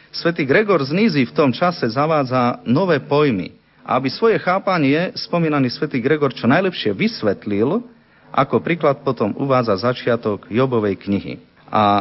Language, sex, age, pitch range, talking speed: Slovak, male, 40-59, 125-180 Hz, 130 wpm